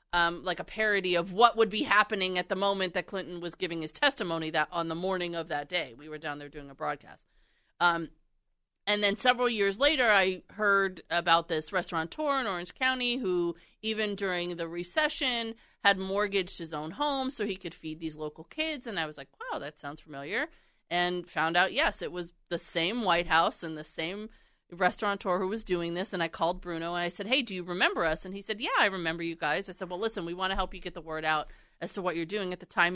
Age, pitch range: 30-49, 170-210 Hz